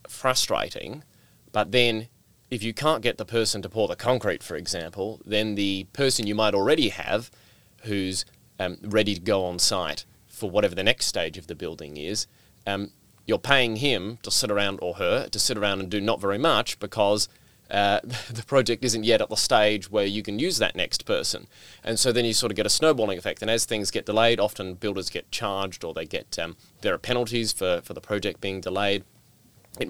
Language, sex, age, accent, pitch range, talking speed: English, male, 30-49, Australian, 95-115 Hz, 210 wpm